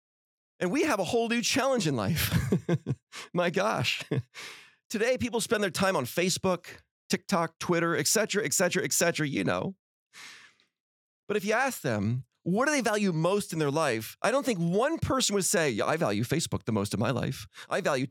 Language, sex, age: English, male, 40-59